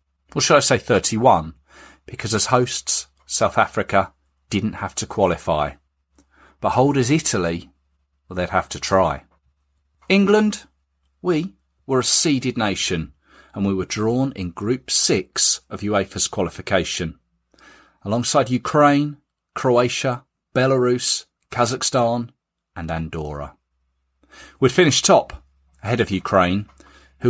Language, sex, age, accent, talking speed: English, male, 40-59, British, 115 wpm